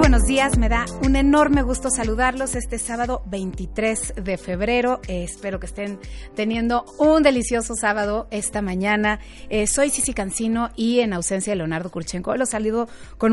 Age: 30-49